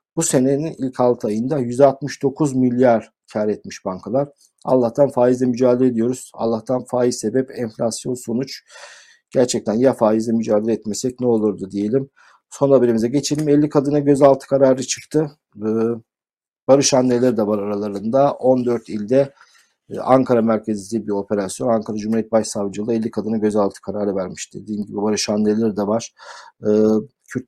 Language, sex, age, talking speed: Turkish, male, 50-69, 135 wpm